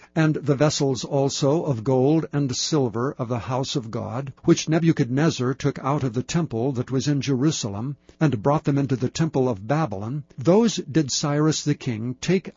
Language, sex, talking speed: English, male, 180 wpm